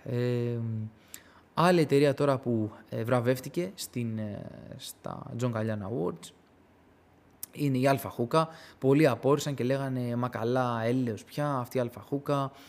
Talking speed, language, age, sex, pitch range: 115 wpm, Greek, 20-39, male, 115-150 Hz